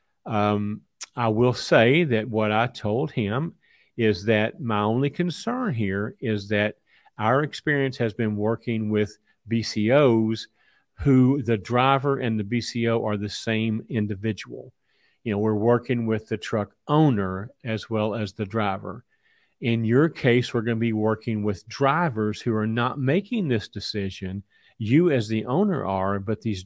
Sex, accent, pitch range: male, American, 110-135 Hz